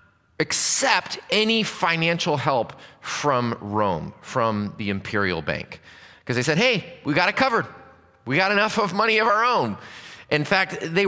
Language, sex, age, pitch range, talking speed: English, male, 30-49, 125-160 Hz, 155 wpm